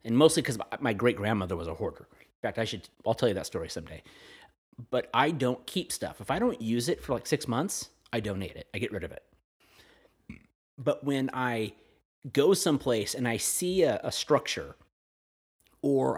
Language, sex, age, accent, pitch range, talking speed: English, male, 30-49, American, 110-145 Hz, 200 wpm